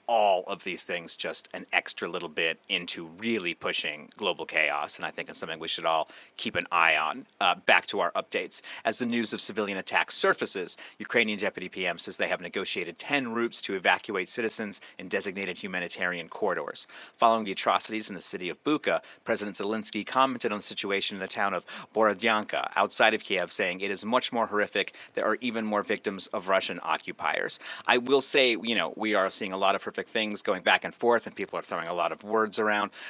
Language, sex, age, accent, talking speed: English, male, 30-49, American, 210 wpm